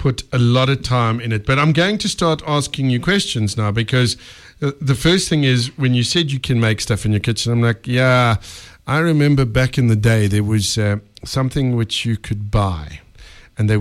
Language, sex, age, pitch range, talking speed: English, male, 50-69, 105-140 Hz, 215 wpm